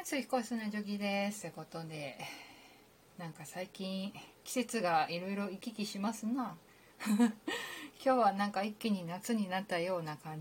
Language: Japanese